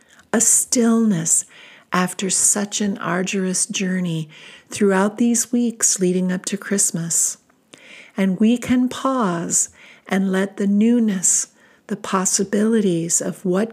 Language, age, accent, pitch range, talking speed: English, 50-69, American, 180-225 Hz, 115 wpm